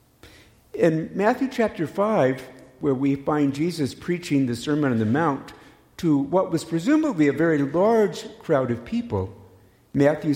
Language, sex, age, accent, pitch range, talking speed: English, male, 50-69, American, 110-170 Hz, 145 wpm